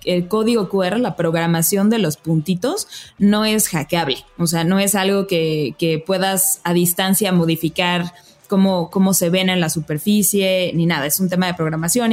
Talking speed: 180 wpm